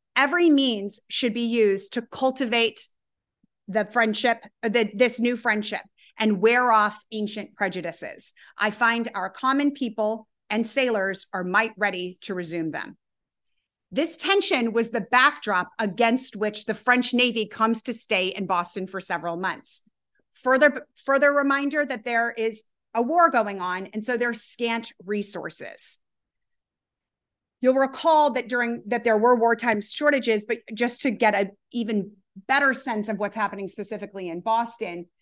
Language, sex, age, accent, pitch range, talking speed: English, female, 30-49, American, 195-240 Hz, 150 wpm